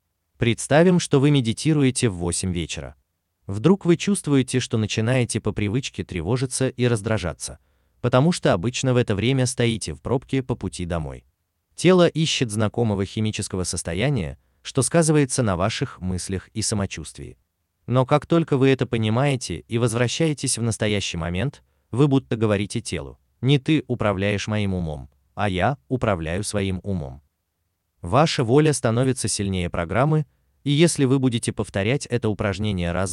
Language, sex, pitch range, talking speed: Russian, male, 90-130 Hz, 145 wpm